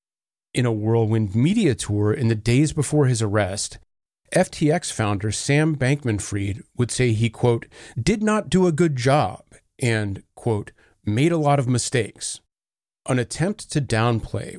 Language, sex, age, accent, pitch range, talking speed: English, male, 30-49, American, 110-150 Hz, 150 wpm